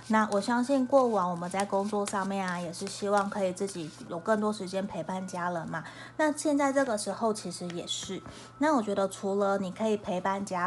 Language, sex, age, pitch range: Chinese, female, 20-39, 185-230 Hz